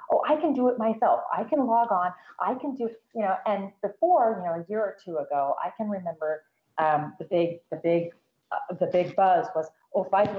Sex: female